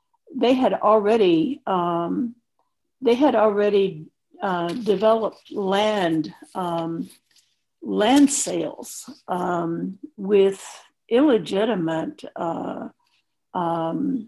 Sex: female